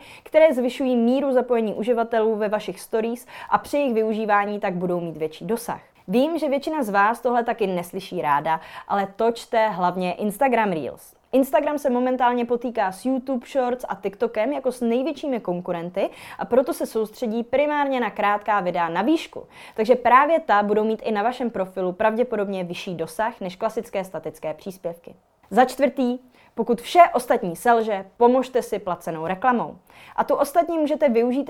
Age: 20-39